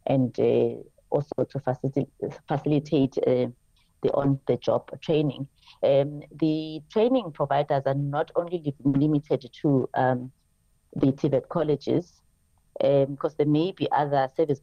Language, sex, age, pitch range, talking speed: English, female, 30-49, 130-150 Hz, 125 wpm